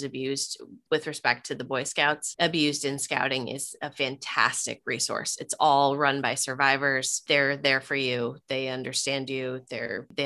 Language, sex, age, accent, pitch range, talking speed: English, female, 20-39, American, 135-155 Hz, 165 wpm